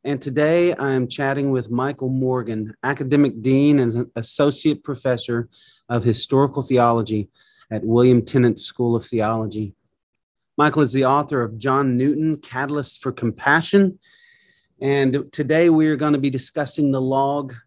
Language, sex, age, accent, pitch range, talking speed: English, male, 30-49, American, 120-145 Hz, 140 wpm